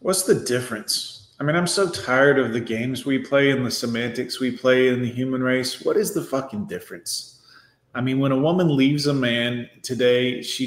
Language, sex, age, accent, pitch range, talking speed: English, male, 30-49, American, 125-150 Hz, 210 wpm